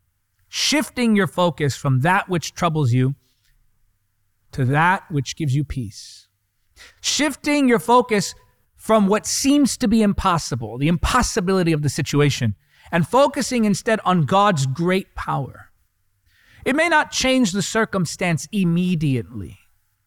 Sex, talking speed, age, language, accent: male, 125 wpm, 30-49, English, American